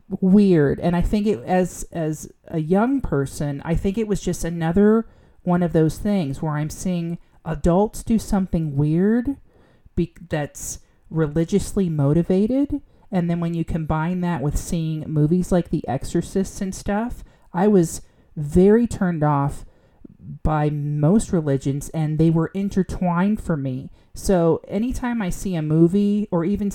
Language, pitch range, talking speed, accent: English, 155-200 Hz, 150 wpm, American